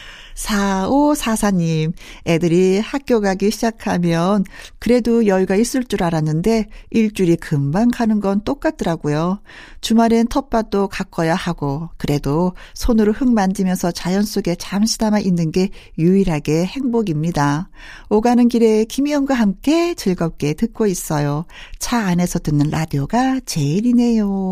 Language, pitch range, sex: Korean, 170-240 Hz, female